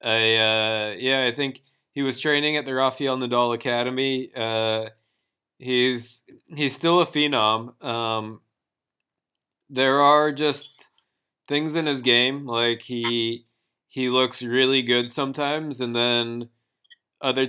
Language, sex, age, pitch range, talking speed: English, male, 20-39, 115-135 Hz, 125 wpm